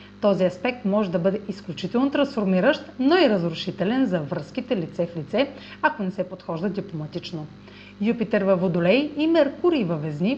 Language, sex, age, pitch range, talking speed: Bulgarian, female, 30-49, 175-240 Hz, 155 wpm